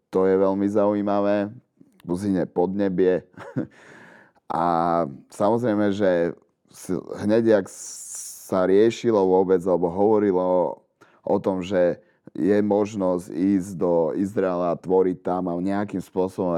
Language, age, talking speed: Slovak, 30-49, 110 wpm